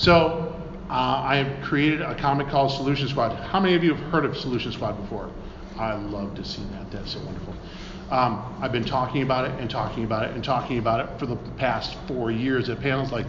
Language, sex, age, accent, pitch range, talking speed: English, male, 40-59, American, 130-165 Hz, 225 wpm